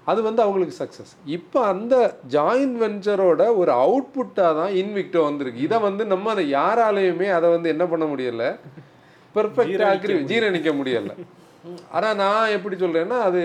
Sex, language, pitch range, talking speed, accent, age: male, Tamil, 135-195 Hz, 135 wpm, native, 30-49